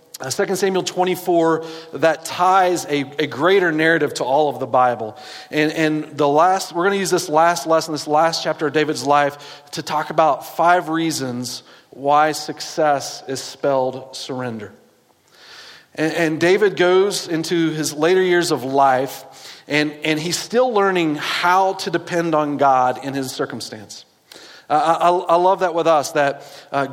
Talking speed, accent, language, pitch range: 165 wpm, American, English, 150-175 Hz